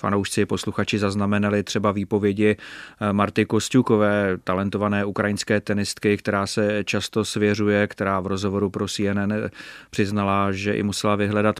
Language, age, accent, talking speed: Czech, 30-49, native, 125 wpm